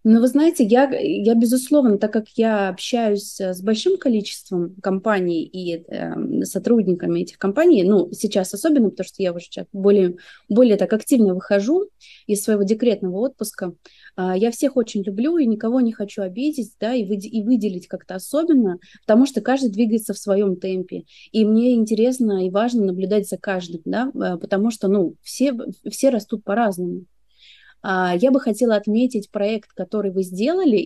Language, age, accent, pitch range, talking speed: Russian, 20-39, native, 190-235 Hz, 160 wpm